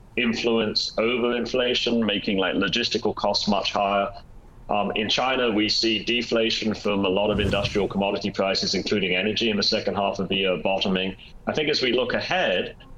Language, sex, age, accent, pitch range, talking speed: English, male, 30-49, British, 100-115 Hz, 175 wpm